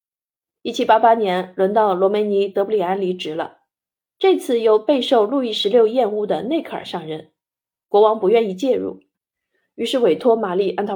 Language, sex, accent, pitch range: Chinese, female, native, 190-250 Hz